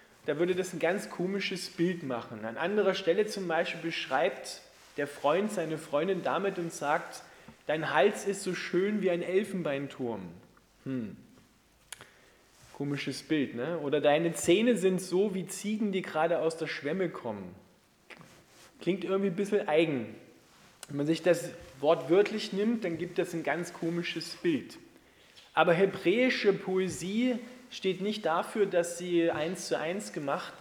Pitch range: 160-195 Hz